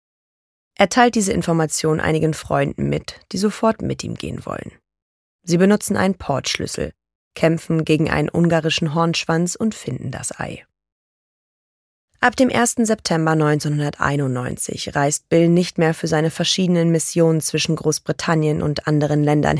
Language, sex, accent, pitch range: German, female, German, 140-175 Hz